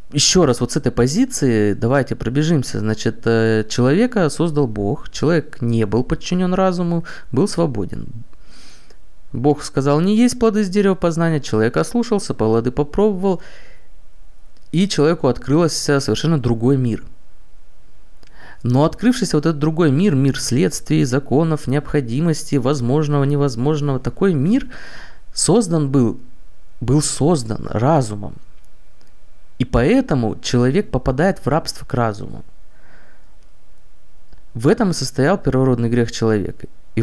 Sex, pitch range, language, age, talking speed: male, 125-165 Hz, Russian, 20-39, 115 wpm